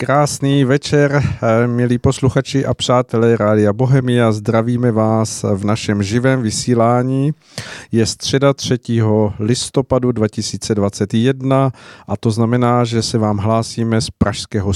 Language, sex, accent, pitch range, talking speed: Czech, male, native, 110-130 Hz, 115 wpm